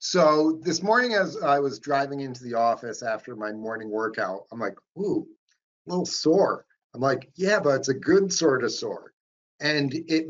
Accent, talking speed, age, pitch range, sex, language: American, 185 wpm, 50-69, 120-160 Hz, male, English